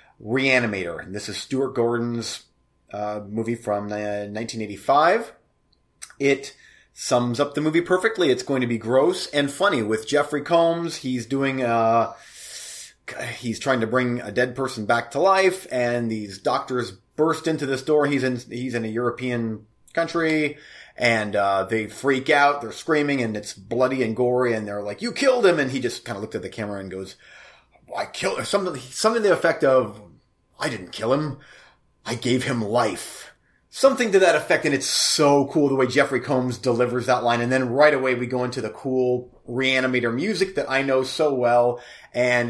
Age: 30-49